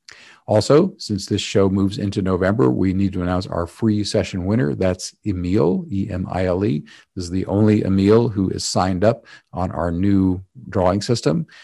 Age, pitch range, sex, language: 50-69, 90-105 Hz, male, English